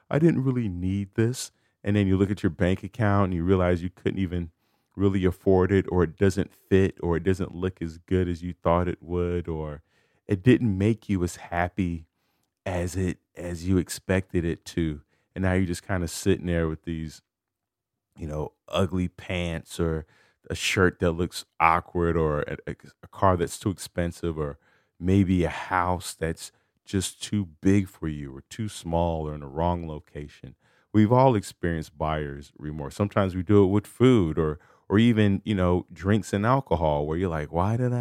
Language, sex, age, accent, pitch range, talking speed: English, male, 30-49, American, 80-105 Hz, 190 wpm